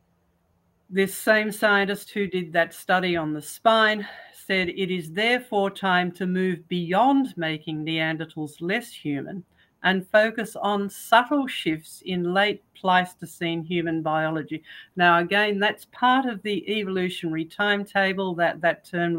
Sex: female